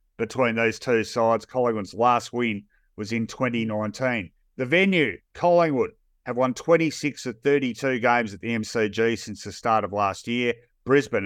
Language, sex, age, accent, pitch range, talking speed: English, male, 50-69, Australian, 110-130 Hz, 155 wpm